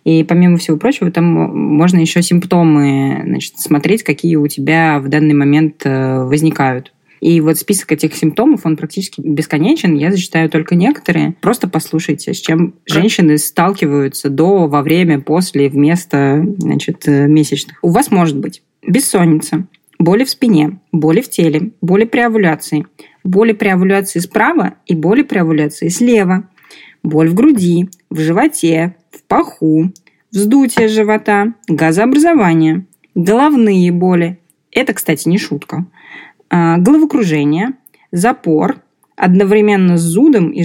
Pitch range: 155-210 Hz